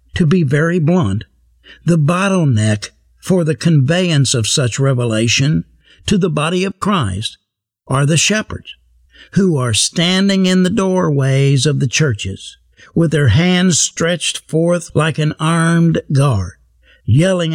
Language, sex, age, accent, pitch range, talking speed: English, male, 60-79, American, 120-185 Hz, 135 wpm